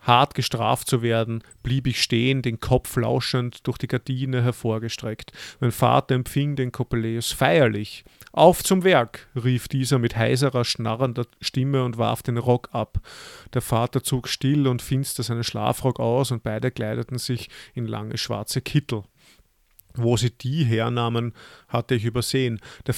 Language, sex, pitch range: German, male, 115-135 Hz